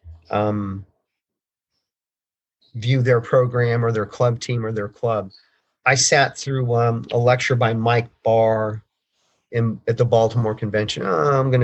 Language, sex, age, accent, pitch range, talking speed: English, male, 40-59, American, 110-125 Hz, 145 wpm